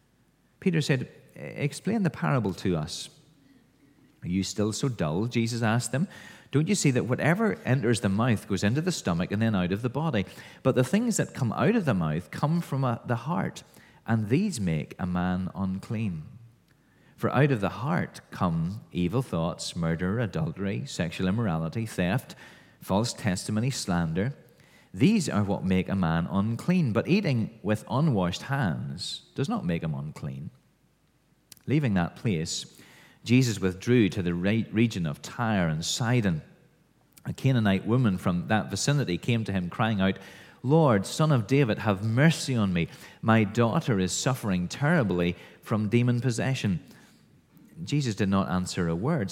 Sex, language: male, English